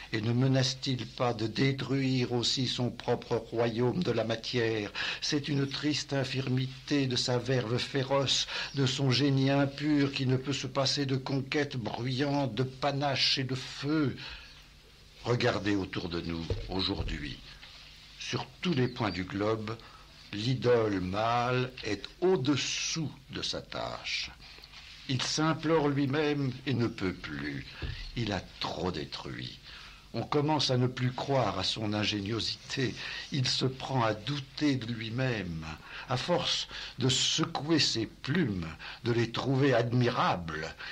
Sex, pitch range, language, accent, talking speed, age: male, 110-140 Hz, French, French, 135 wpm, 60-79